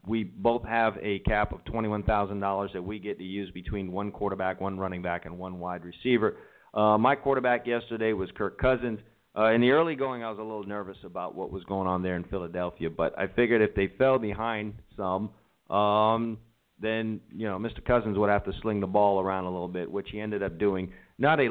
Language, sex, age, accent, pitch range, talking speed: English, male, 40-59, American, 95-115 Hz, 220 wpm